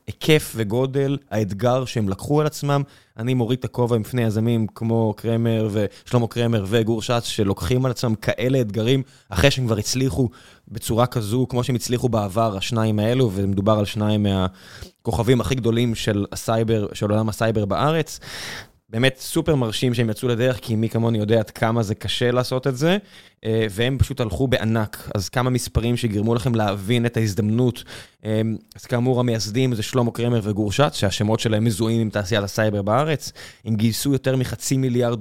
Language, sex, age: Hebrew, male, 20-39